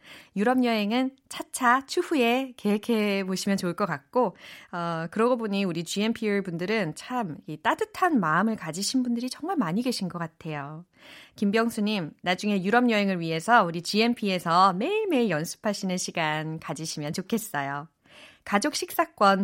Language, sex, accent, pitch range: Korean, female, native, 175-265 Hz